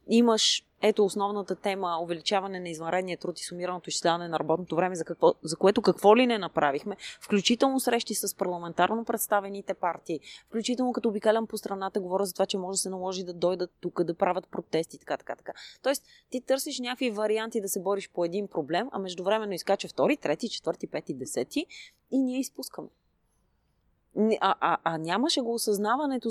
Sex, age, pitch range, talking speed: female, 20-39, 165-220 Hz, 180 wpm